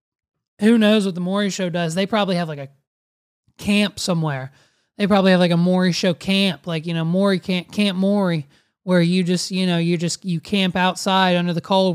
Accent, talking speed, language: American, 210 wpm, English